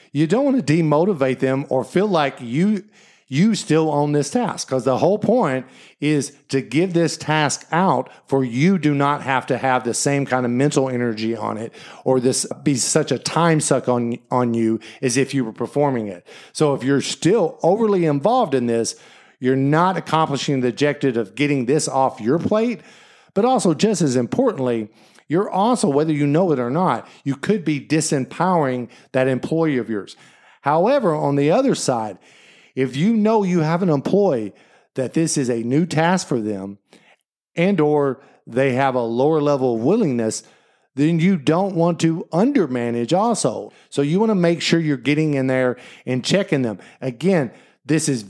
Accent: American